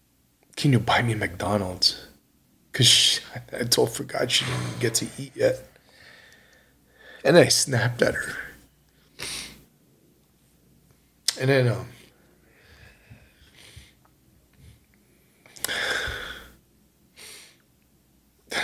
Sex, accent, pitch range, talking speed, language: male, American, 90-135 Hz, 75 wpm, English